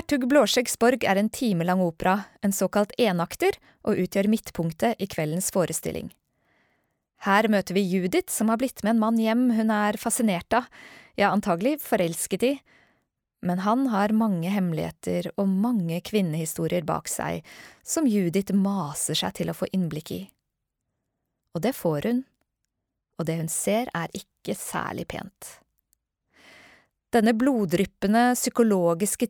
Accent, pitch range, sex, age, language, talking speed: Swedish, 180-230 Hz, female, 20-39, English, 140 wpm